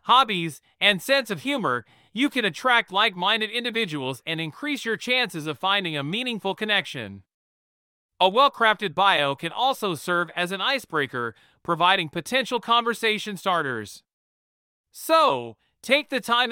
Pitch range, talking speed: 160-250 Hz, 130 wpm